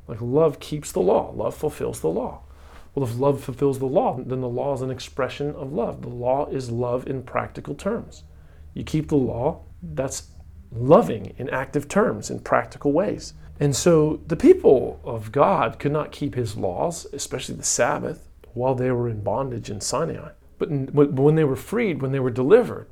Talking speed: 190 wpm